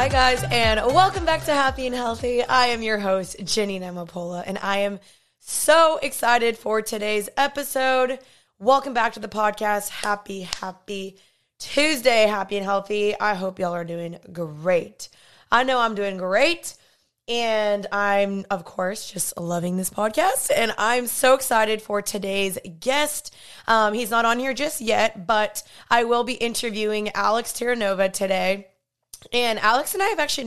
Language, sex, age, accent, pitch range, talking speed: English, female, 20-39, American, 195-240 Hz, 160 wpm